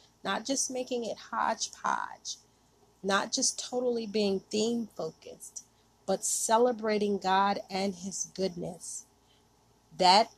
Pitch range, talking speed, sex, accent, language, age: 180-225 Hz, 105 wpm, female, American, English, 30-49